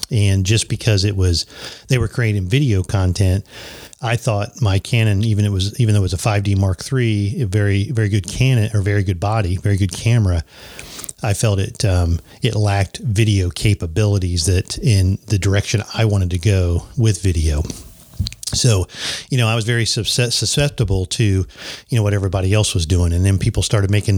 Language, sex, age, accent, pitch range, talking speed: English, male, 40-59, American, 95-115 Hz, 190 wpm